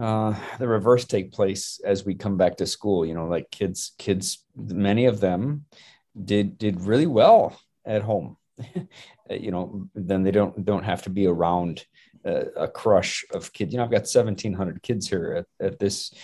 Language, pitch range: English, 100-120 Hz